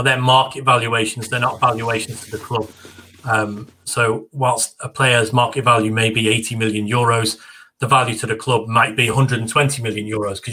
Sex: male